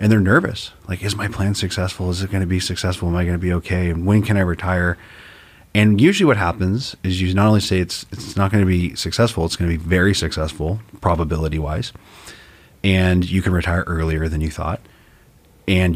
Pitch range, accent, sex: 85-100 Hz, American, male